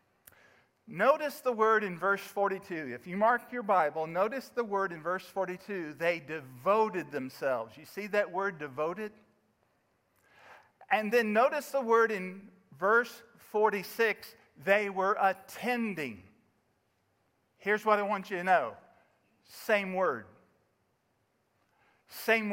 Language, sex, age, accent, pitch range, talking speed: English, male, 50-69, American, 185-245 Hz, 125 wpm